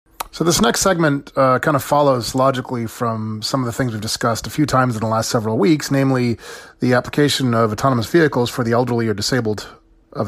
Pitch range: 115-145 Hz